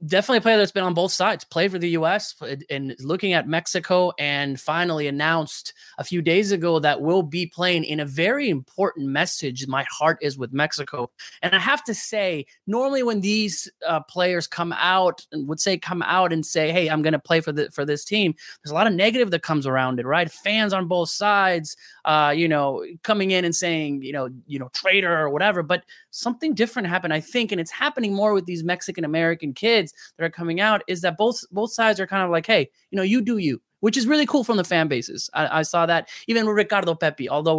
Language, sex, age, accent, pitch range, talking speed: English, male, 20-39, American, 155-200 Hz, 235 wpm